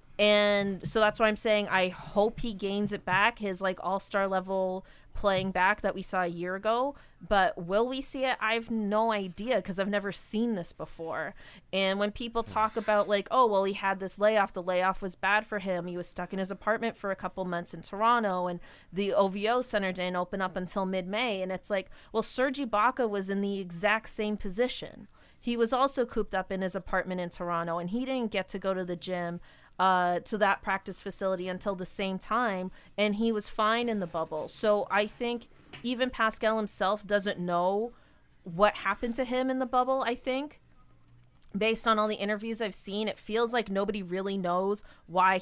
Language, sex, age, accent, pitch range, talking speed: English, female, 30-49, American, 185-220 Hz, 205 wpm